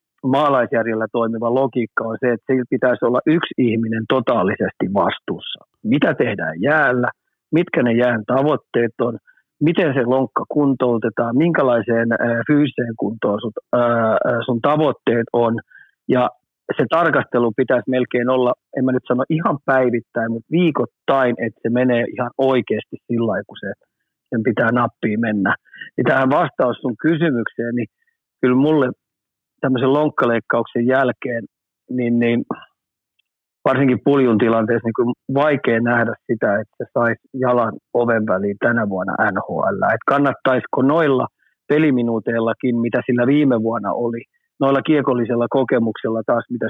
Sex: male